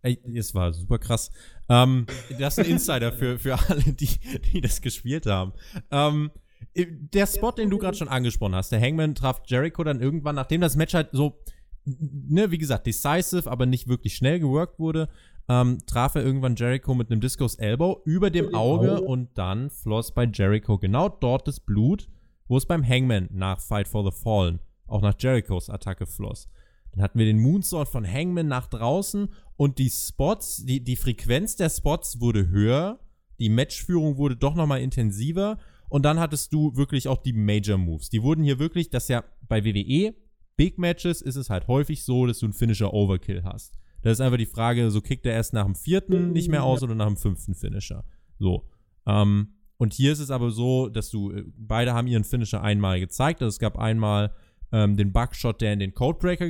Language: German